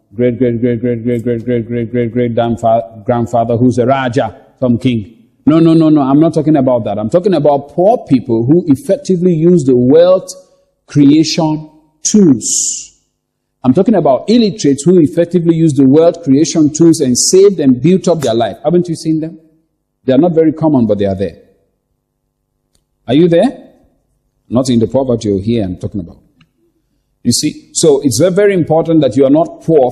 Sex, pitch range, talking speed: male, 125-170 Hz, 185 wpm